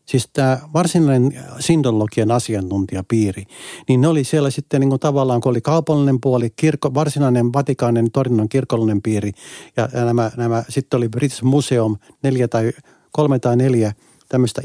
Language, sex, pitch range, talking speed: Finnish, male, 110-140 Hz, 150 wpm